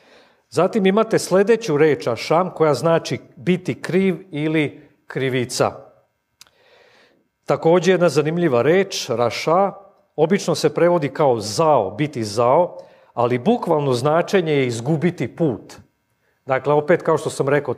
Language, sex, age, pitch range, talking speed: English, male, 40-59, 130-170 Hz, 120 wpm